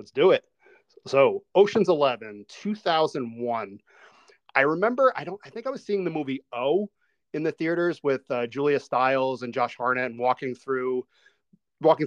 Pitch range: 125-160 Hz